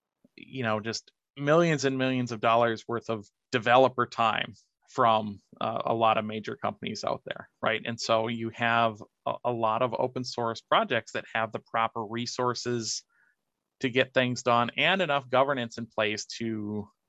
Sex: male